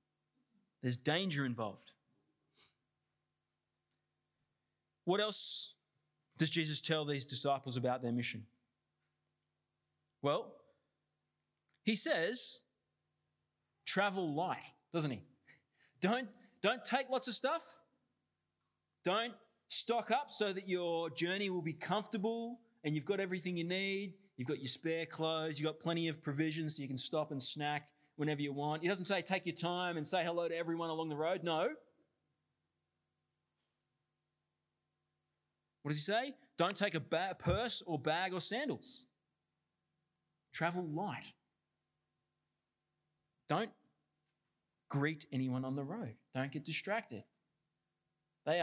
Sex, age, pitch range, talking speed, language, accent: male, 20-39, 140-195 Hz, 125 wpm, English, Australian